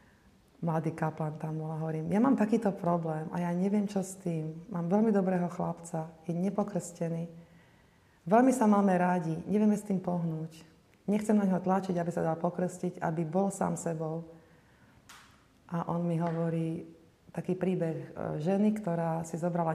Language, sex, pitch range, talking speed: Slovak, female, 160-180 Hz, 155 wpm